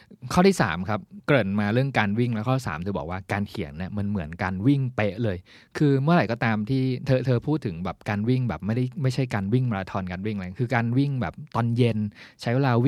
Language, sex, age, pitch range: Thai, male, 20-39, 95-125 Hz